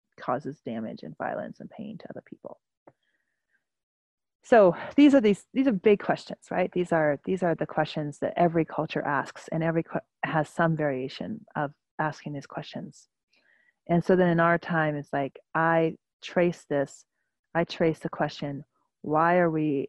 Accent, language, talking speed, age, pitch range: American, English, 170 wpm, 30-49, 150-170 Hz